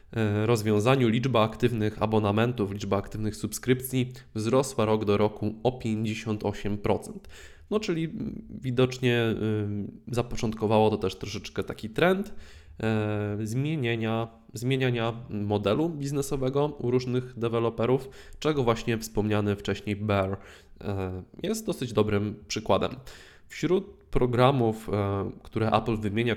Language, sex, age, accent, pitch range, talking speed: Polish, male, 20-39, native, 105-130 Hz, 95 wpm